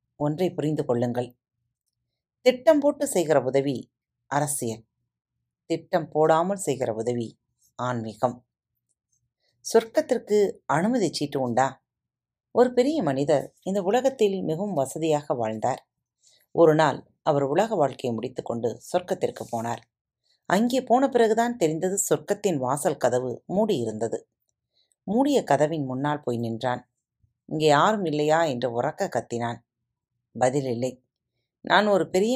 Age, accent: 30-49, native